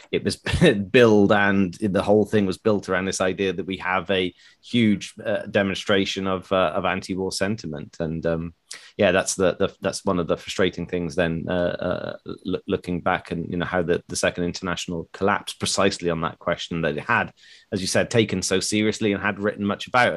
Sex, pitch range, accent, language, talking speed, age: male, 90-110 Hz, British, English, 205 wpm, 30-49